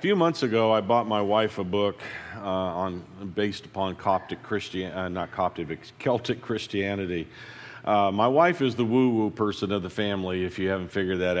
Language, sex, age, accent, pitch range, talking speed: English, male, 50-69, American, 90-110 Hz, 190 wpm